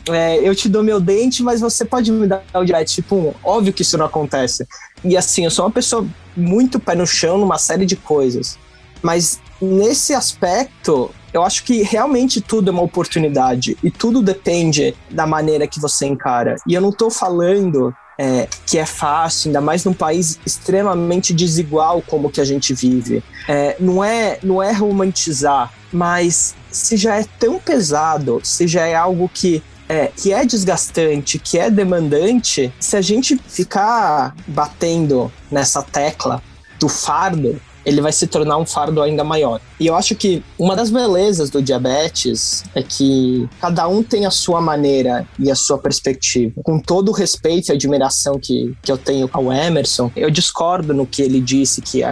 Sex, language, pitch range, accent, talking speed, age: male, Portuguese, 135-185 Hz, Brazilian, 170 wpm, 20-39